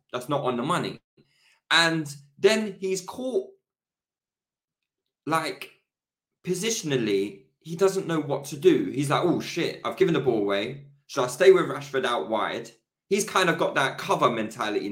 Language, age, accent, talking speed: English, 20-39, British, 160 wpm